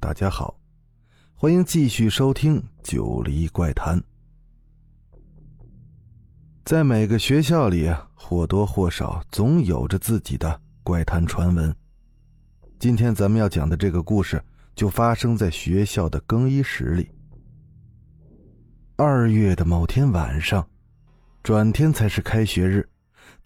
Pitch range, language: 90-140 Hz, Chinese